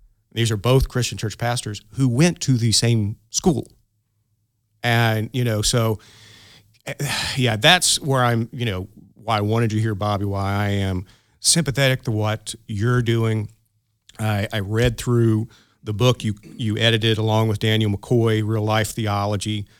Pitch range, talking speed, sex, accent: 105-120 Hz, 160 wpm, male, American